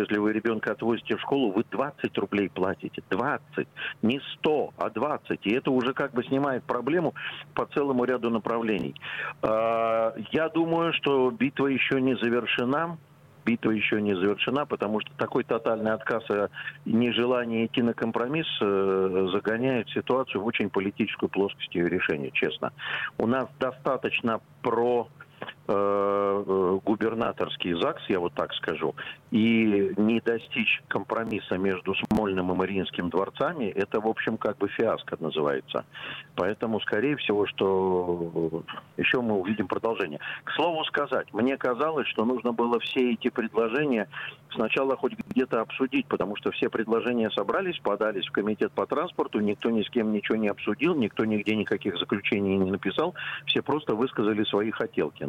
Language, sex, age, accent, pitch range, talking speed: Russian, male, 50-69, native, 100-120 Hz, 145 wpm